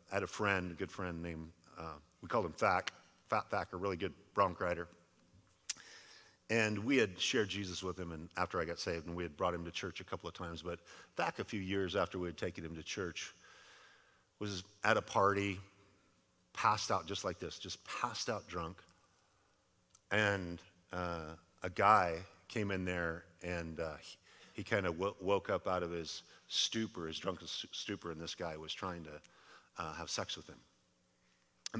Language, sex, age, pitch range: English, male, 50-69, 85-100 Hz